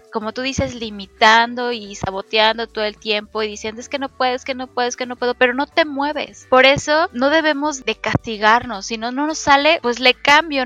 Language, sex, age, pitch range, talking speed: Spanish, female, 20-39, 220-270 Hz, 220 wpm